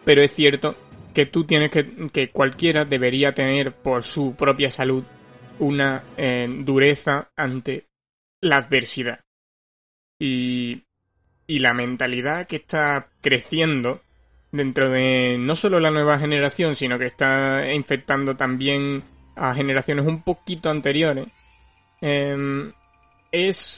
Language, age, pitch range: Spanish, 20-39, 130-150 Hz